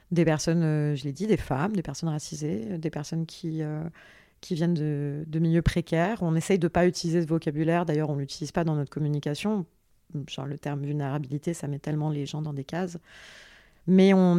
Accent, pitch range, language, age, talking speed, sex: French, 150-180 Hz, French, 40-59, 200 wpm, female